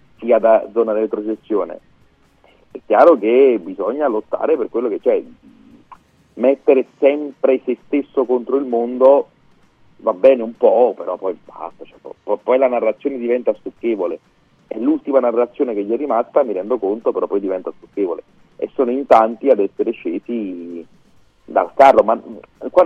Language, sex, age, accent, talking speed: Italian, male, 40-59, native, 160 wpm